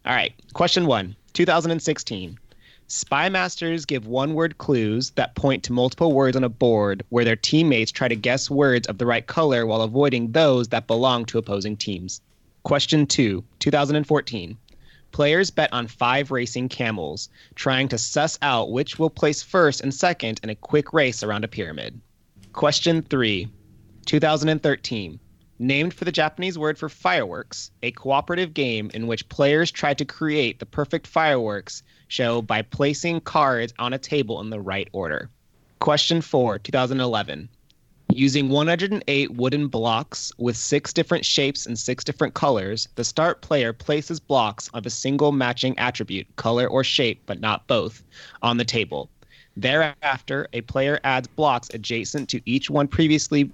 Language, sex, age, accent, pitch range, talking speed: English, male, 30-49, American, 115-150 Hz, 160 wpm